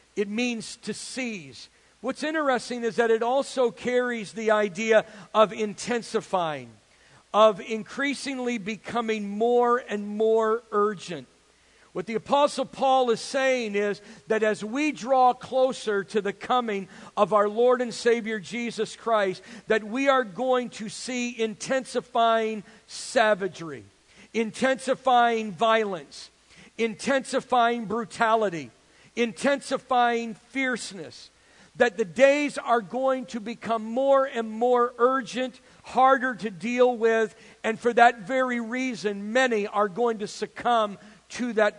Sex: male